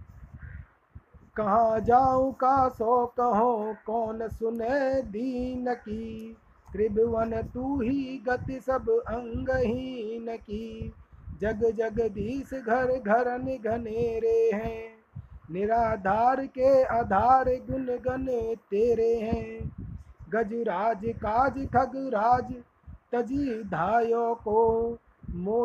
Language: Hindi